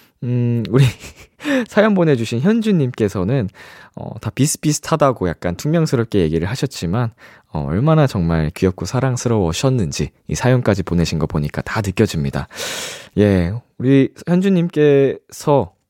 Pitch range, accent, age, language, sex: 95-150 Hz, native, 20-39, Korean, male